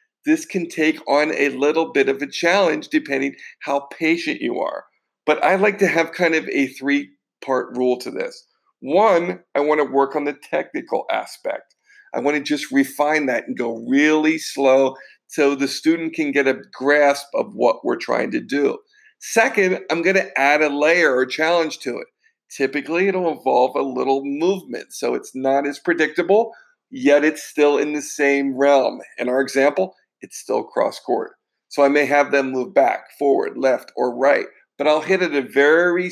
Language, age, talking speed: English, 50-69, 185 wpm